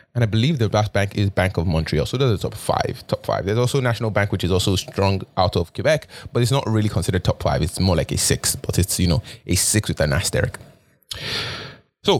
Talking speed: 245 wpm